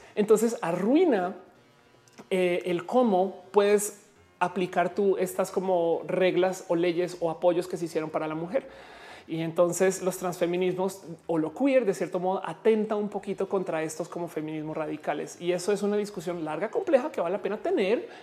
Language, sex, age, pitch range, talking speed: Spanish, male, 30-49, 175-220 Hz, 170 wpm